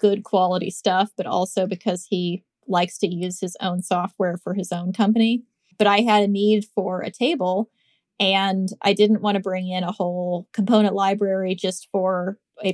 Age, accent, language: 20-39, American, English